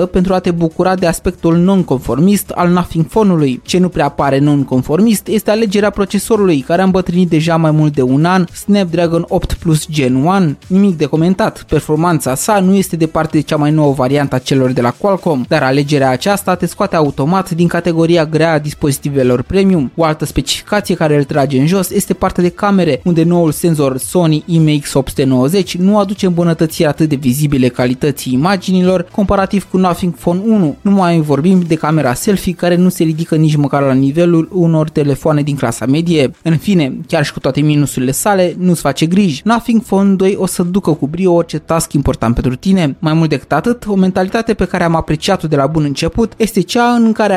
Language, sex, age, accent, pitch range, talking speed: Romanian, male, 20-39, native, 150-190 Hz, 195 wpm